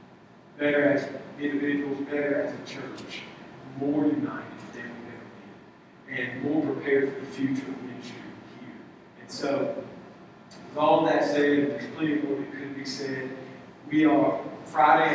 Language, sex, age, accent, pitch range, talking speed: English, male, 40-59, American, 135-155 Hz, 145 wpm